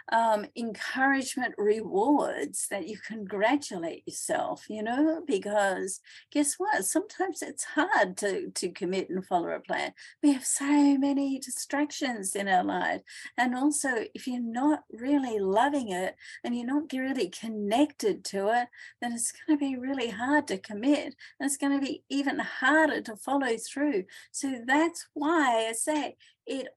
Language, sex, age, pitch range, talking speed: English, female, 50-69, 225-310 Hz, 155 wpm